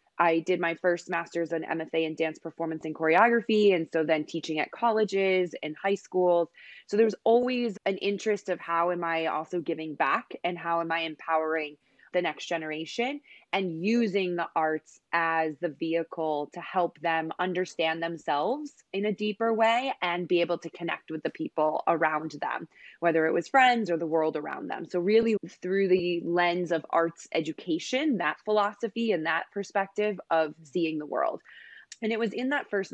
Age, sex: 20-39, female